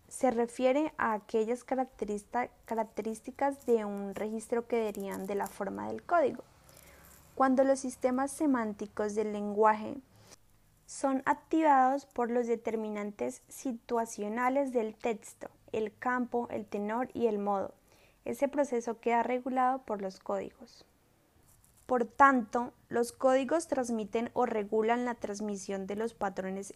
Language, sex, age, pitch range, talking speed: English, female, 20-39, 210-255 Hz, 125 wpm